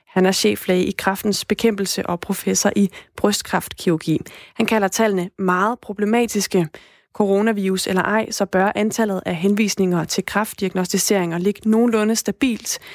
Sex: female